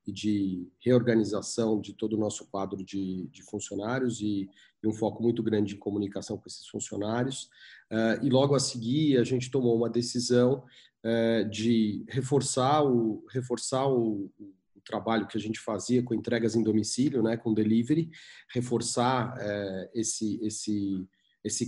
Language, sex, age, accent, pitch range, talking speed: Portuguese, male, 40-59, Brazilian, 110-125 Hz, 155 wpm